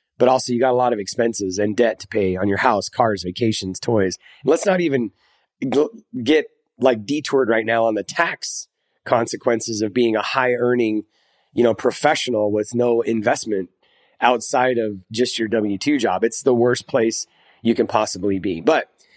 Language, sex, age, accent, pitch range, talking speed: English, male, 30-49, American, 105-130 Hz, 180 wpm